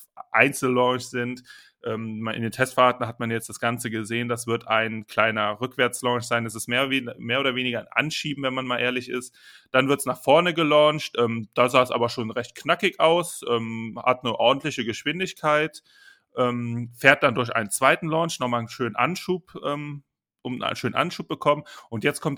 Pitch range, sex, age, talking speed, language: 115-135 Hz, male, 30-49, 175 wpm, German